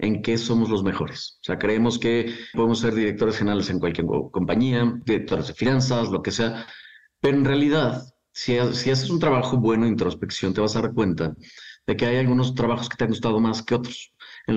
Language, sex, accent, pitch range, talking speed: Spanish, male, Mexican, 105-125 Hz, 215 wpm